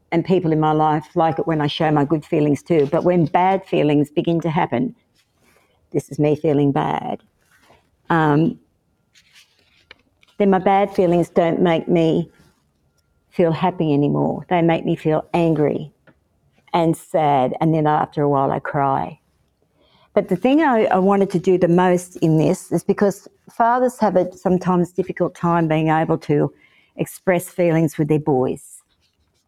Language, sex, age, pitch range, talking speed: English, female, 50-69, 160-195 Hz, 160 wpm